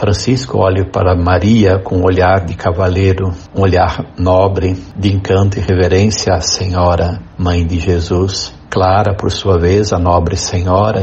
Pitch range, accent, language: 90-100 Hz, Brazilian, Portuguese